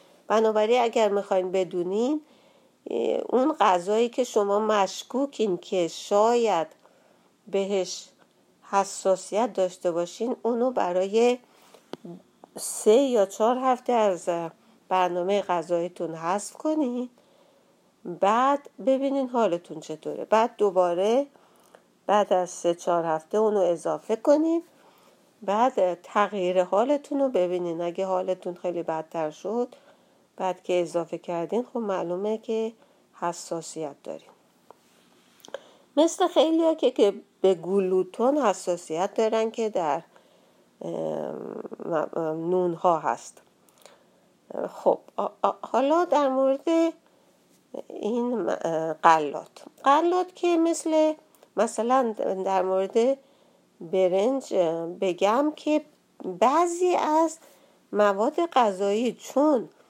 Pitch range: 180-270 Hz